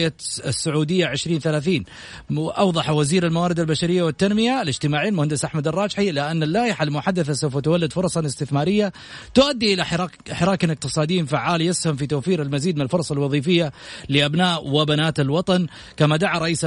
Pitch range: 150-180 Hz